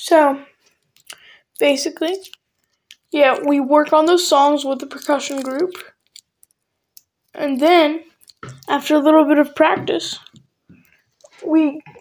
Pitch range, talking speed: 275-310 Hz, 105 wpm